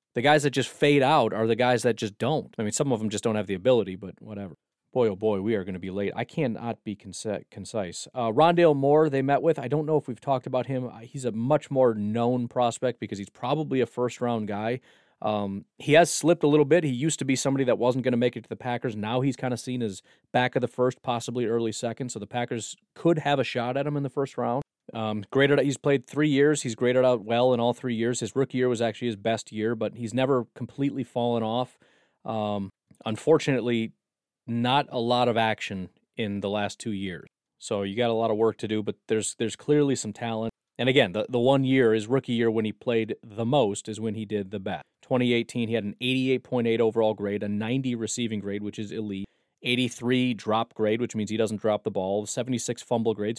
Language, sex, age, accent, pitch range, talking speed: English, male, 30-49, American, 110-130 Hz, 240 wpm